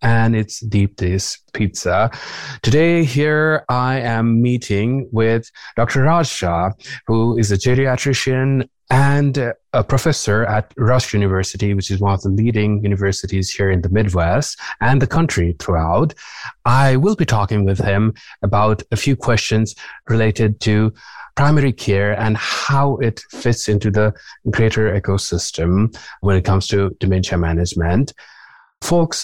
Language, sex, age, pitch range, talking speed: English, male, 30-49, 100-120 Hz, 140 wpm